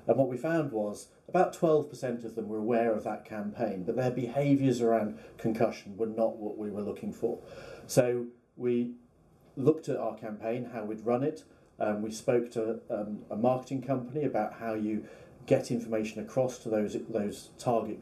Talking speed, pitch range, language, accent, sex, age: 180 wpm, 110-130 Hz, English, British, male, 40-59